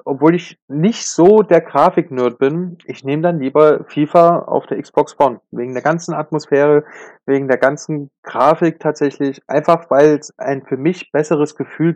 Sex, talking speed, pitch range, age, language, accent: male, 165 wpm, 135-165 Hz, 30-49, German, German